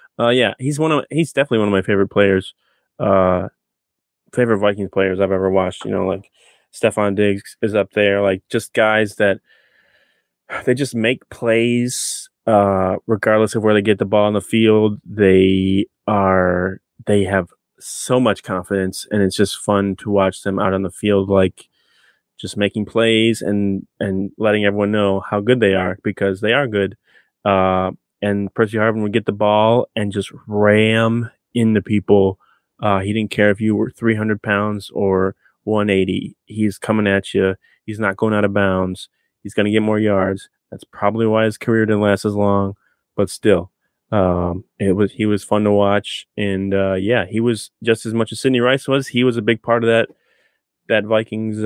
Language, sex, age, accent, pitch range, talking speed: English, male, 20-39, American, 100-110 Hz, 185 wpm